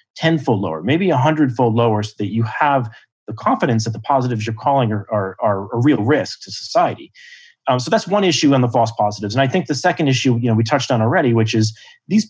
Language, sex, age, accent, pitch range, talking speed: English, male, 30-49, American, 110-145 Hz, 240 wpm